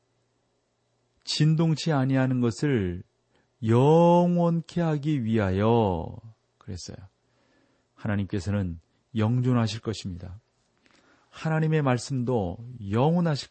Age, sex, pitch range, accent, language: 40-59, male, 100-140 Hz, native, Korean